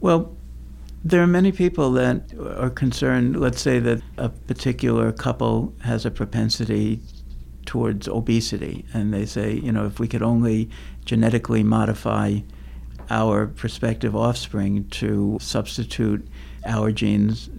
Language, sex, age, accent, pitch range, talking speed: English, male, 60-79, American, 95-115 Hz, 125 wpm